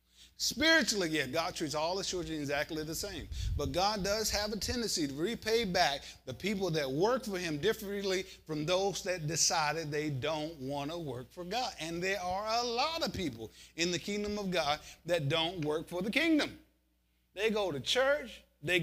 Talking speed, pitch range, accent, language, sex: 190 wpm, 150-210 Hz, American, English, male